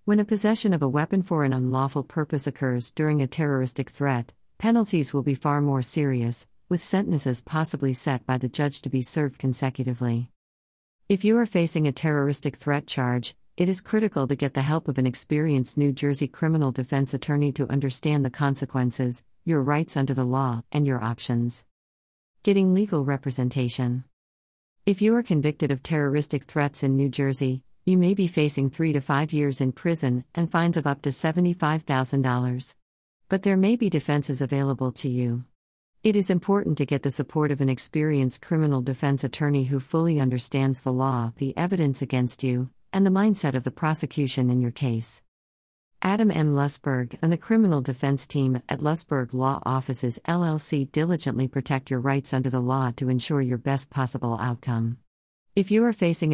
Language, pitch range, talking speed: English, 130-155 Hz, 175 wpm